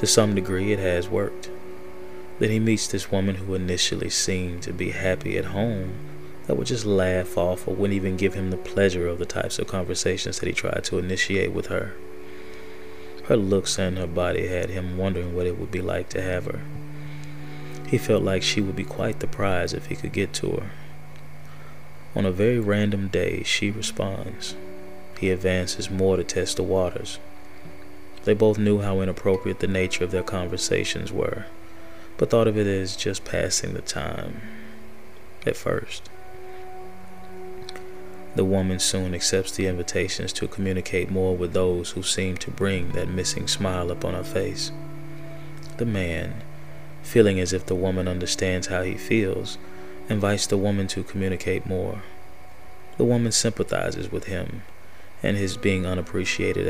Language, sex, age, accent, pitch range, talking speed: English, male, 20-39, American, 90-100 Hz, 165 wpm